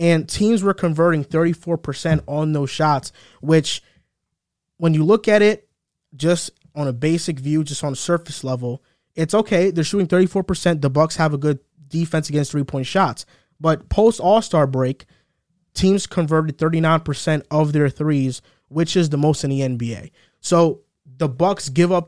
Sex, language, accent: male, English, American